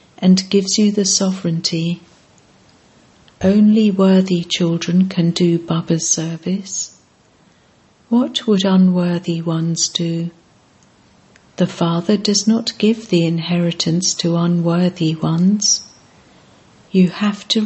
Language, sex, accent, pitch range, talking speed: English, female, British, 170-200 Hz, 100 wpm